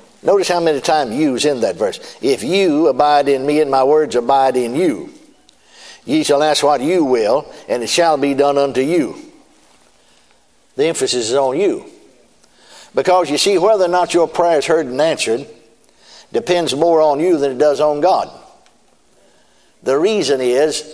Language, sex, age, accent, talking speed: English, male, 60-79, American, 175 wpm